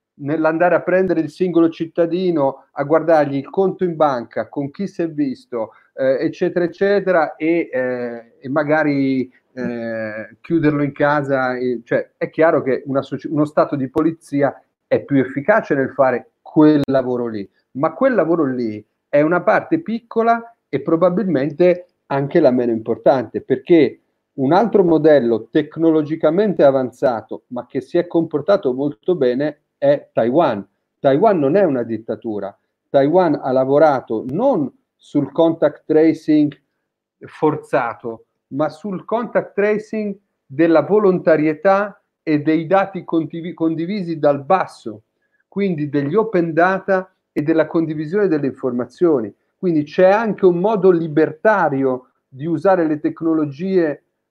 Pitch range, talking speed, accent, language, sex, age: 140-185 Hz, 130 wpm, native, Italian, male, 40-59